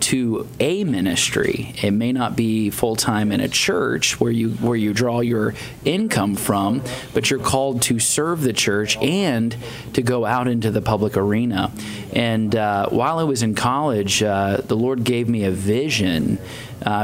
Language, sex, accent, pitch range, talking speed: English, male, American, 105-130 Hz, 175 wpm